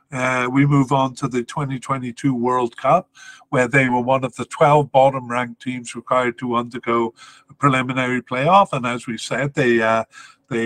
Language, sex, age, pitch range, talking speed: English, male, 50-69, 120-140 Hz, 175 wpm